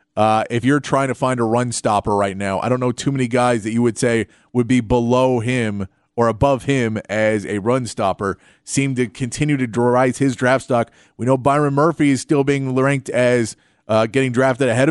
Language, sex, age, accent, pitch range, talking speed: English, male, 30-49, American, 115-135 Hz, 215 wpm